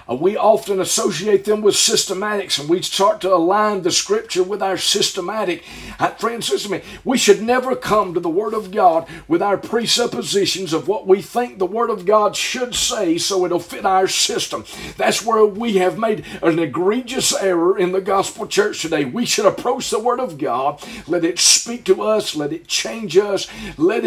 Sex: male